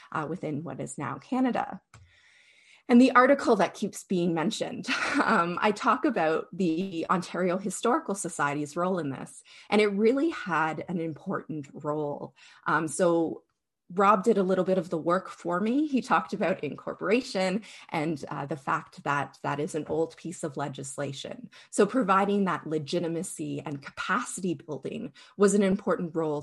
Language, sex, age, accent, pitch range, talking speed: English, female, 30-49, American, 155-205 Hz, 160 wpm